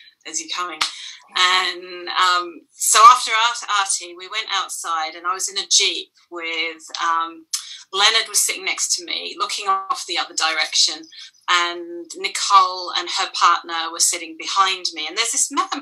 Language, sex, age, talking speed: English, female, 30-49, 170 wpm